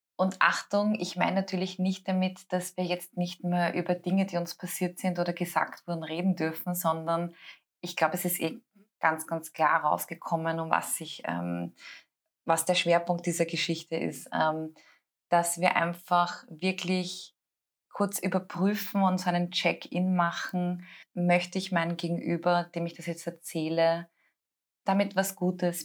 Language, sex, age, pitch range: German, female, 20-39, 170-195 Hz